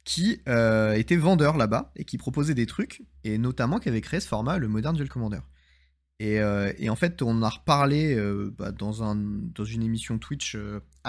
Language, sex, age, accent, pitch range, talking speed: French, male, 20-39, French, 100-130 Hz, 210 wpm